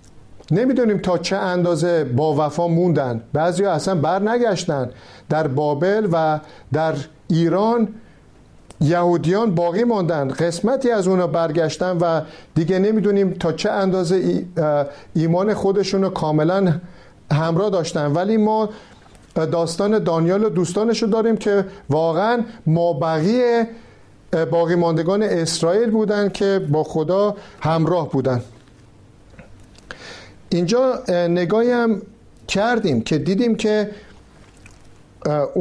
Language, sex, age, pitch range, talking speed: Persian, male, 50-69, 155-205 Hz, 100 wpm